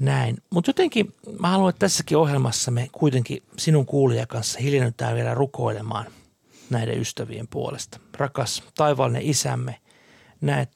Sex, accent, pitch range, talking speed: male, native, 120-150 Hz, 115 wpm